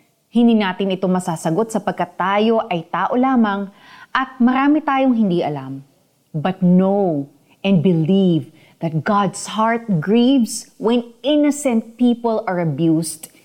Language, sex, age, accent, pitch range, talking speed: Filipino, female, 30-49, native, 170-235 Hz, 120 wpm